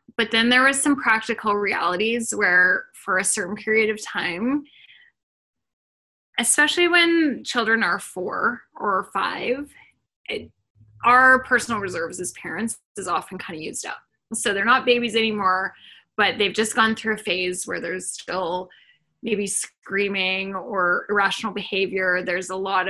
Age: 10-29